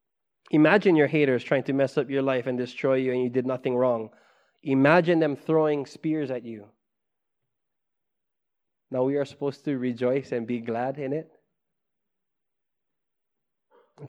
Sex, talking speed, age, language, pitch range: male, 150 wpm, 20-39, English, 125-160 Hz